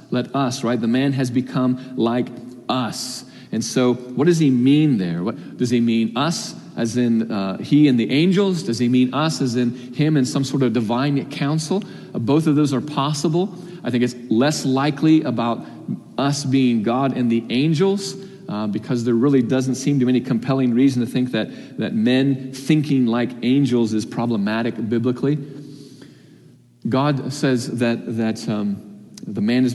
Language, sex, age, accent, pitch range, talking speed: English, male, 40-59, American, 110-140 Hz, 180 wpm